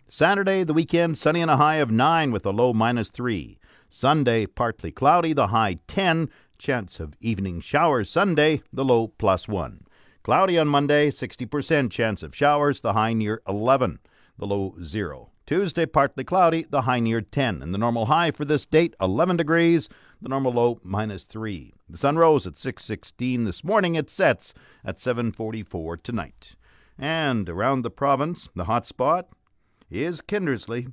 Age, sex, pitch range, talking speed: 50-69, male, 105-150 Hz, 165 wpm